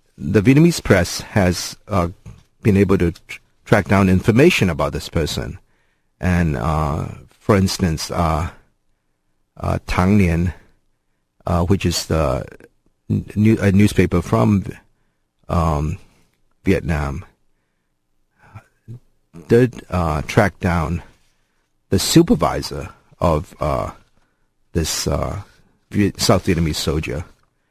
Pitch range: 75-100 Hz